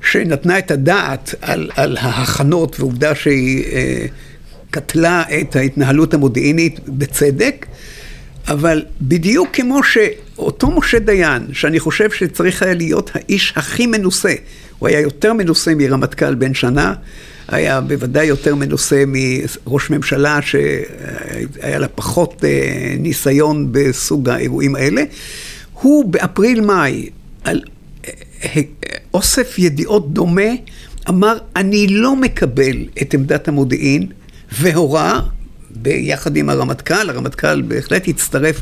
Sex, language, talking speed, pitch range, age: male, Hebrew, 105 wpm, 140-190 Hz, 60-79